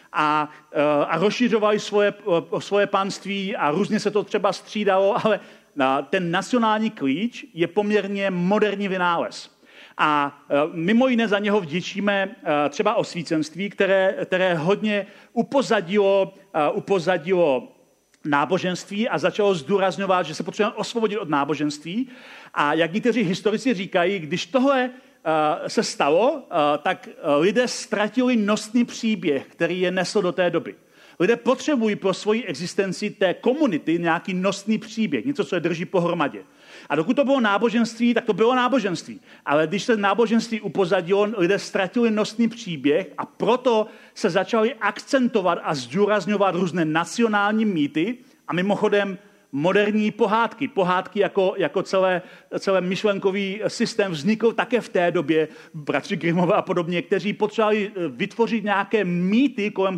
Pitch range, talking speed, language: 180-220 Hz, 130 wpm, Czech